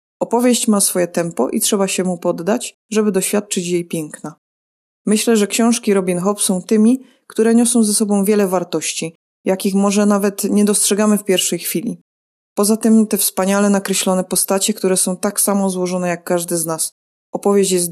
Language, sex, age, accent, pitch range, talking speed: Polish, female, 20-39, native, 175-215 Hz, 170 wpm